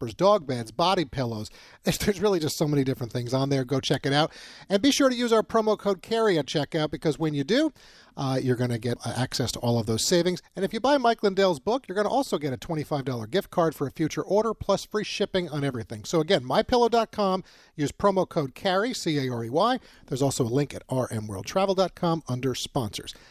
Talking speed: 215 wpm